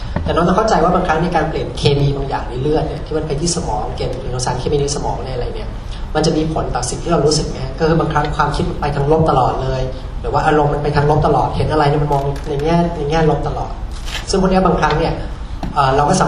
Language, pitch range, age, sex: Thai, 130-160 Hz, 30-49, male